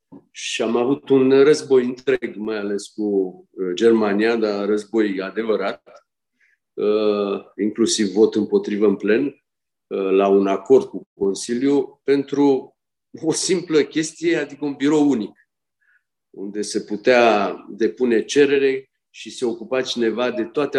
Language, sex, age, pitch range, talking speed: Romanian, male, 50-69, 105-150 Hz, 120 wpm